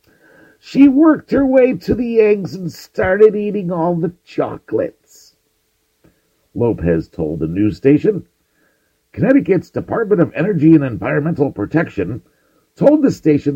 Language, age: English, 50-69